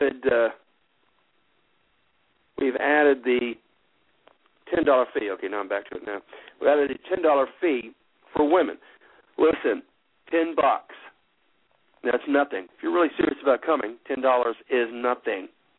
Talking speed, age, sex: 140 wpm, 60-79, male